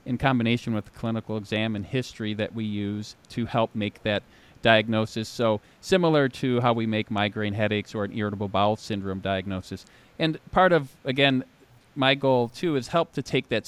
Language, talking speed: English, 185 wpm